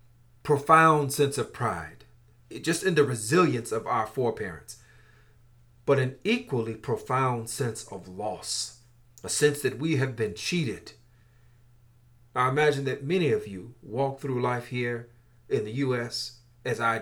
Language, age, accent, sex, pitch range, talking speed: English, 40-59, American, male, 115-140 Hz, 140 wpm